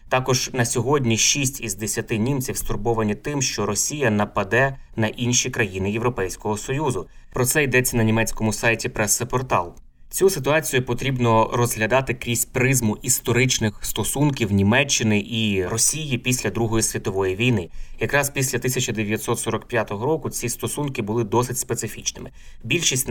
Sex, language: male, Ukrainian